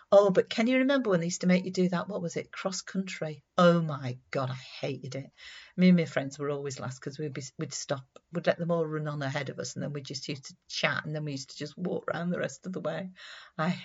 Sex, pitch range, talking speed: female, 145-185 Hz, 275 wpm